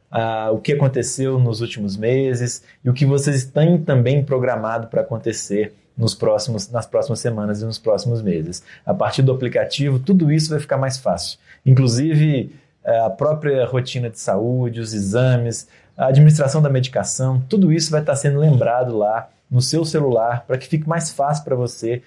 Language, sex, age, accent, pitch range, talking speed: Portuguese, male, 20-39, Brazilian, 115-150 Hz, 165 wpm